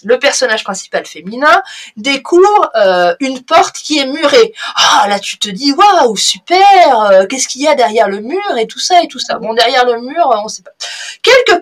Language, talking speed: French, 205 wpm